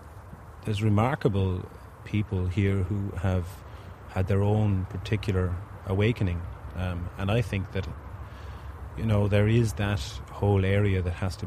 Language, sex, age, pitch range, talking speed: English, male, 30-49, 90-100 Hz, 135 wpm